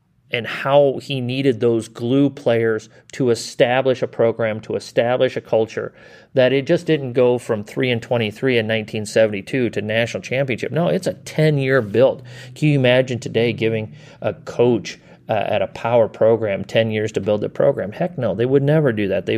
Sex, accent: male, American